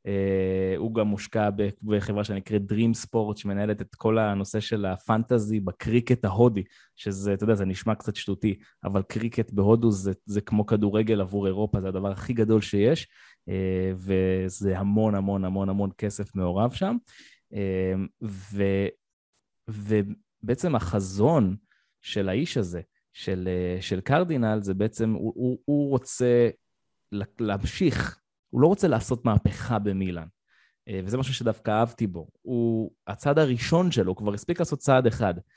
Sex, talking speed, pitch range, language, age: male, 140 wpm, 100-120 Hz, Hebrew, 20-39